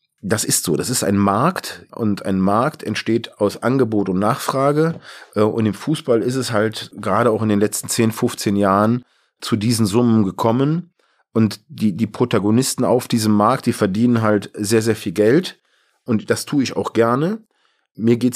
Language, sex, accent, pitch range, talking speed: German, male, German, 100-120 Hz, 180 wpm